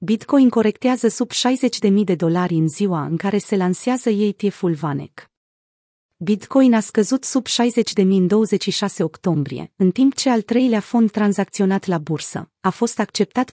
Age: 30-49